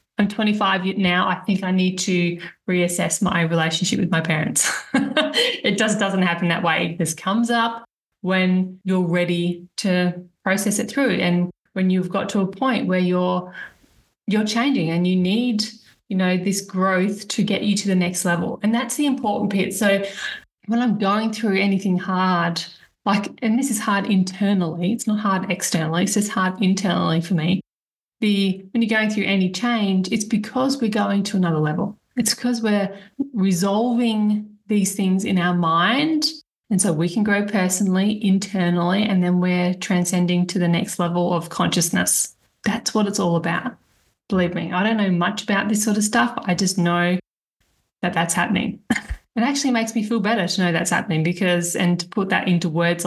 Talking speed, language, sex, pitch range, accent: 185 wpm, English, female, 180-215 Hz, Australian